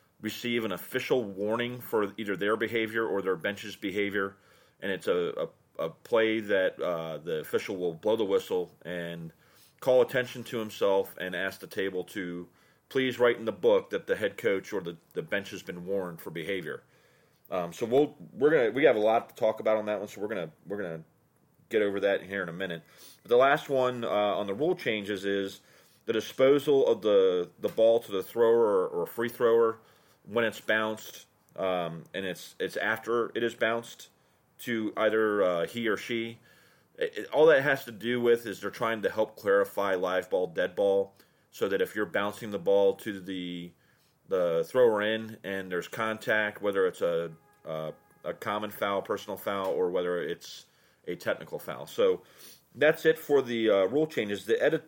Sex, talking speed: male, 195 wpm